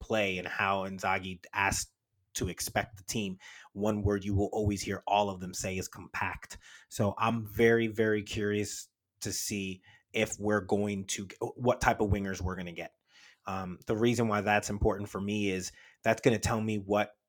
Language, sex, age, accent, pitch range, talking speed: English, male, 30-49, American, 100-115 Hz, 190 wpm